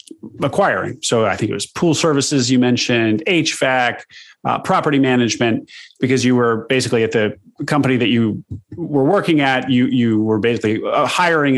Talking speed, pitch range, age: 160 wpm, 115-140 Hz, 30-49